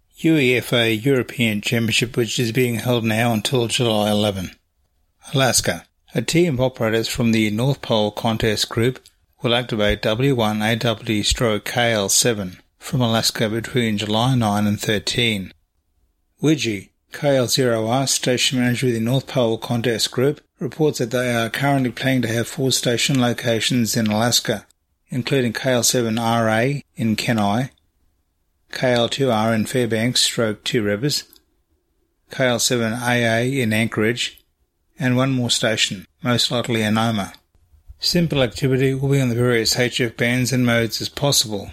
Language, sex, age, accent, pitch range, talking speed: English, male, 30-49, Australian, 105-125 Hz, 130 wpm